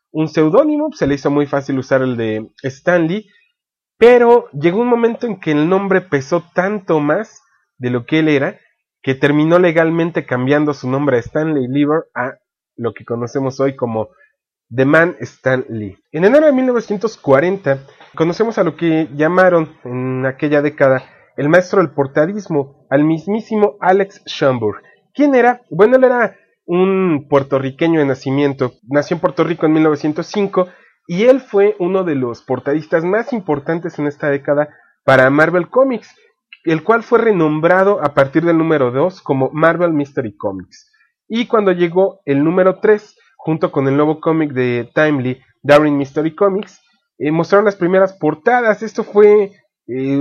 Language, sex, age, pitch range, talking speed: English, male, 30-49, 140-195 Hz, 160 wpm